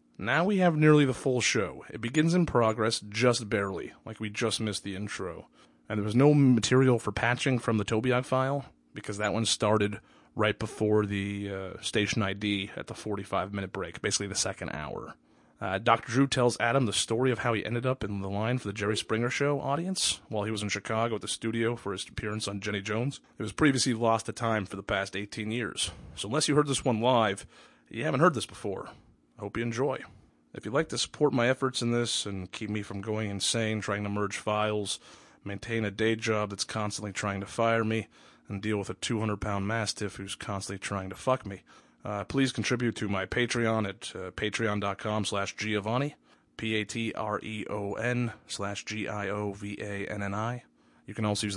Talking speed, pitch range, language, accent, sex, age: 190 wpm, 100-120 Hz, English, American, male, 30-49